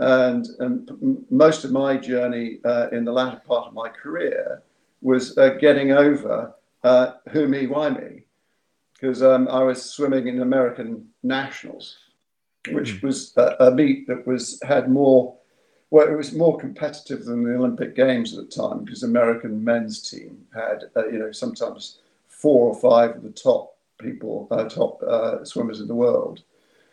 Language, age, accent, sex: English, 50-69, British, male